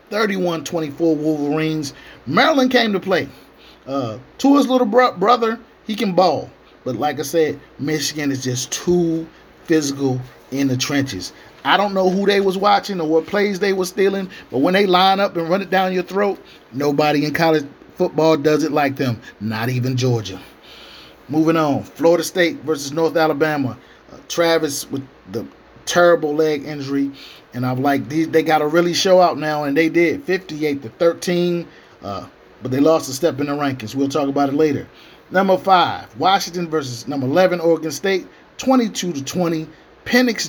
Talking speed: 175 wpm